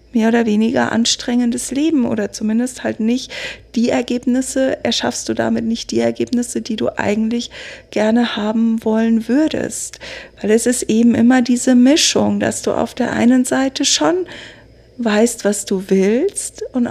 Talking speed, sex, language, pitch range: 155 wpm, female, German, 215-270 Hz